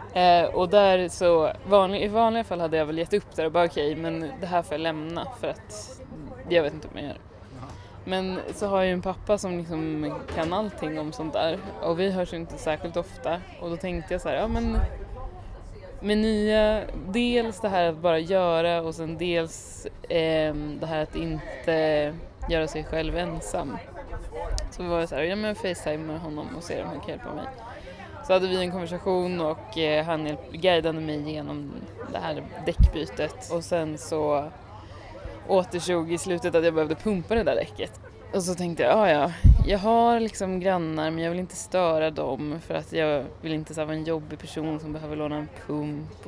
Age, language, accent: 20-39, Swedish, native